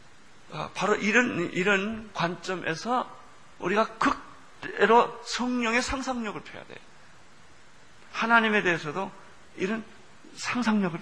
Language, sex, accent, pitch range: Korean, male, native, 155-215 Hz